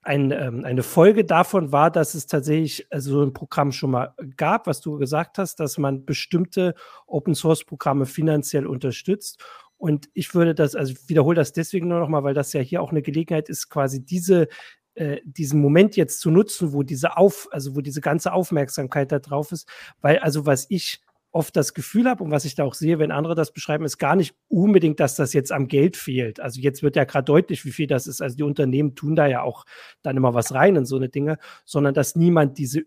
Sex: male